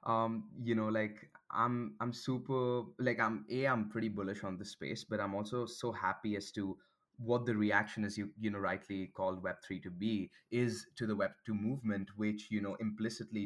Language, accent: English, Indian